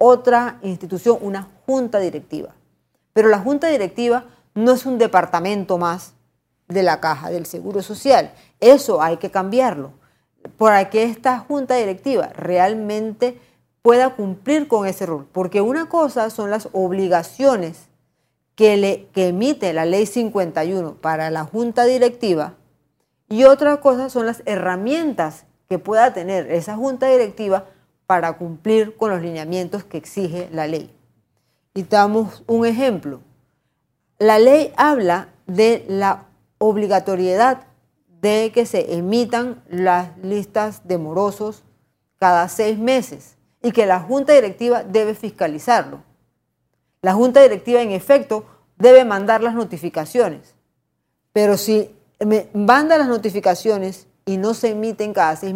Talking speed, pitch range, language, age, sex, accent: 130 wpm, 180-235 Hz, Spanish, 40-59, female, American